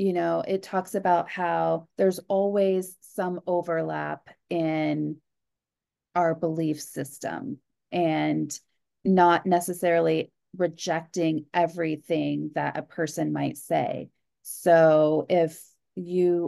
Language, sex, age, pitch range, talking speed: English, female, 30-49, 160-185 Hz, 100 wpm